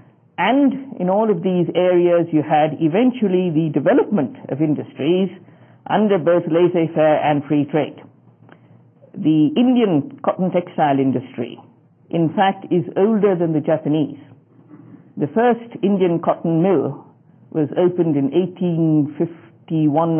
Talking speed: 120 wpm